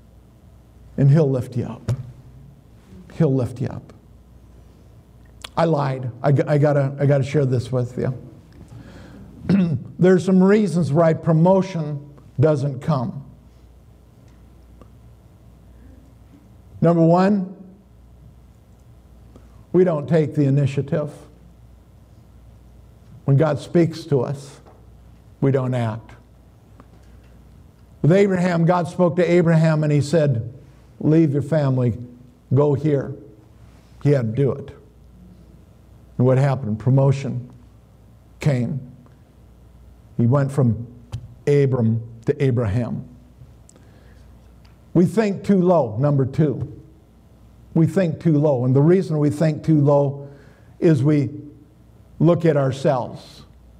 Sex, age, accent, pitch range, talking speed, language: male, 50-69, American, 120-160 Hz, 105 wpm, English